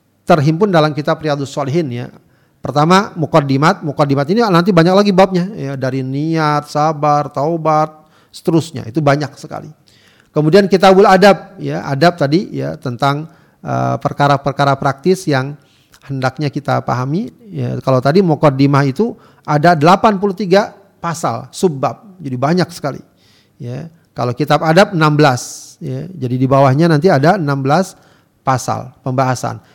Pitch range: 140-175 Hz